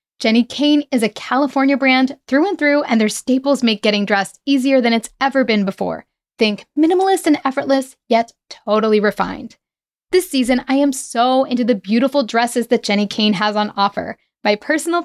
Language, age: English, 10-29